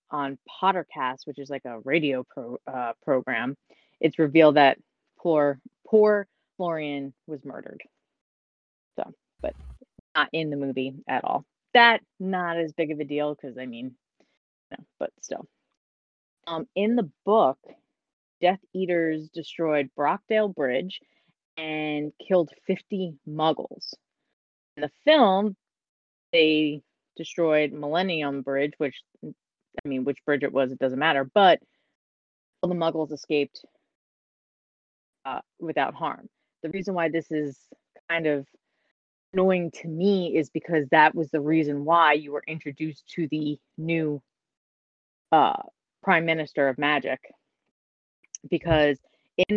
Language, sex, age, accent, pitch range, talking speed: English, female, 30-49, American, 140-170 Hz, 130 wpm